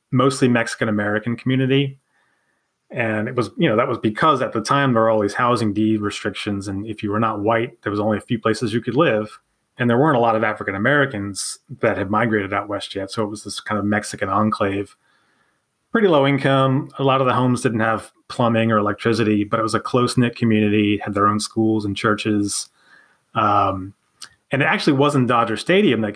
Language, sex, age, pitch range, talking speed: English, male, 30-49, 105-130 Hz, 210 wpm